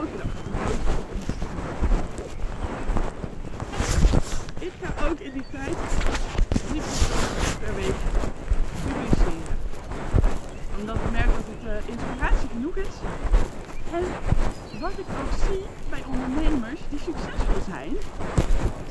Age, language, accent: 20-39, Dutch, Dutch